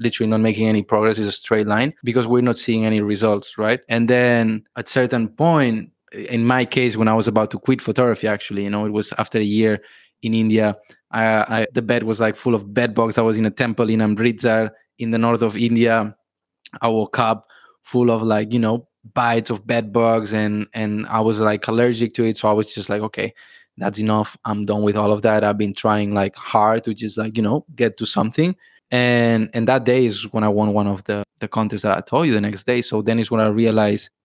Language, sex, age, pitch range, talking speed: English, male, 20-39, 110-125 Hz, 240 wpm